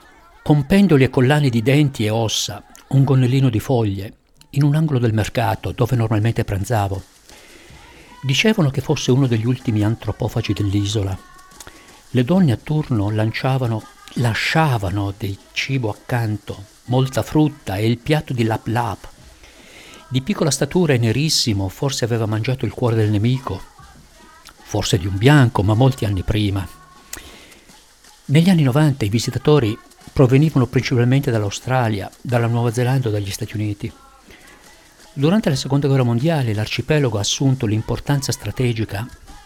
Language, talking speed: Italian, 135 wpm